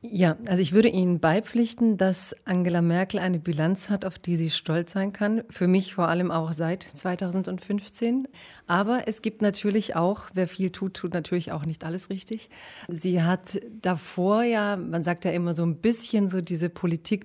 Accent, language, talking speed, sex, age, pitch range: German, German, 185 wpm, female, 40-59, 170-200 Hz